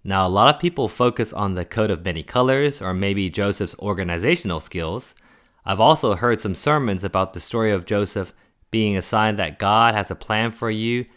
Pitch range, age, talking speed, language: 90-115 Hz, 30-49, 200 wpm, English